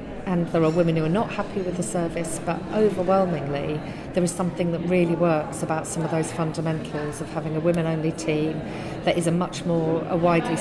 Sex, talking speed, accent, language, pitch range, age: female, 205 wpm, British, English, 155-175 Hz, 40-59